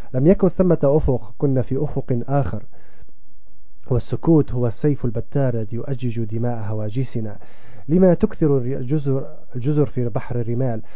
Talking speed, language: 125 wpm, Arabic